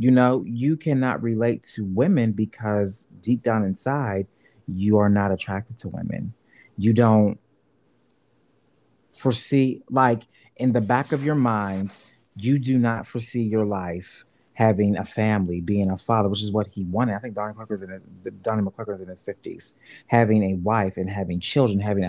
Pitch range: 100-125 Hz